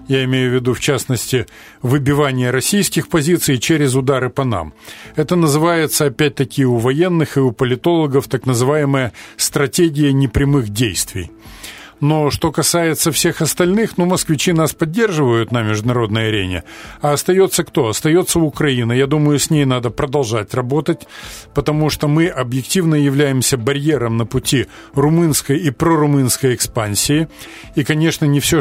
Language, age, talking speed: Russian, 40-59, 140 wpm